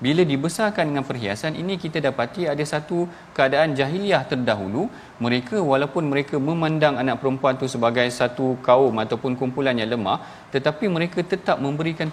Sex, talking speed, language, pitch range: male, 150 wpm, Malayalam, 130-160 Hz